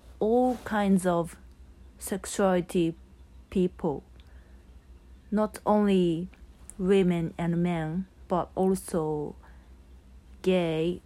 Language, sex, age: Japanese, female, 30-49